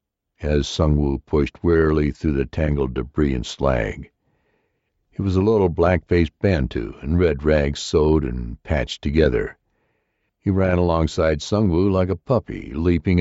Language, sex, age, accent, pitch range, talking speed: English, male, 60-79, American, 75-100 Hz, 150 wpm